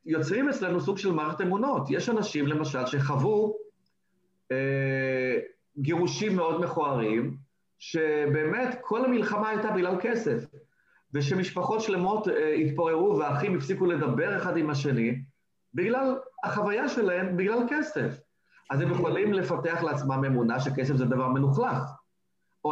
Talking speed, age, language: 120 wpm, 40-59, Hebrew